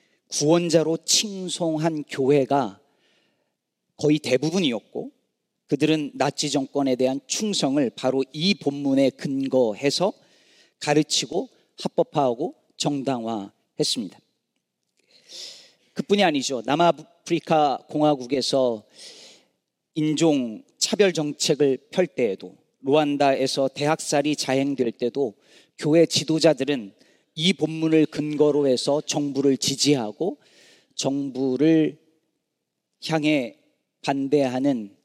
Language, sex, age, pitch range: Korean, male, 40-59, 135-165 Hz